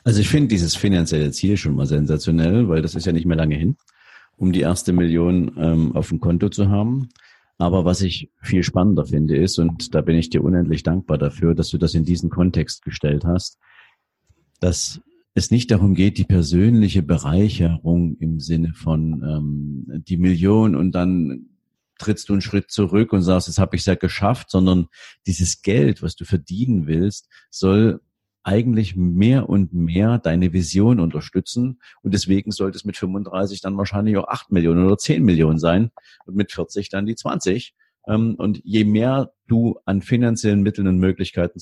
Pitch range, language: 85-105 Hz, German